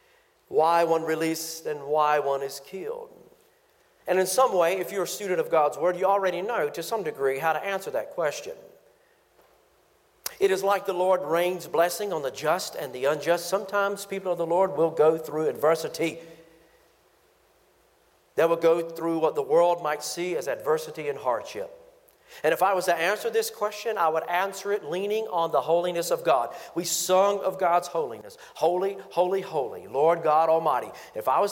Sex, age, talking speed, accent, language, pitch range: male, 50-69, 185 wpm, American, English, 165-225 Hz